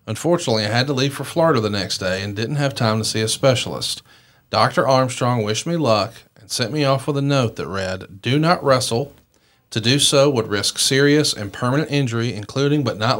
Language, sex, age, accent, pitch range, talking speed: English, male, 40-59, American, 110-135 Hz, 215 wpm